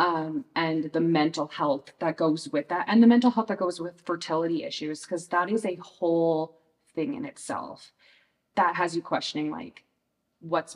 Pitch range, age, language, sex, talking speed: 160-185 Hz, 20-39, English, female, 180 wpm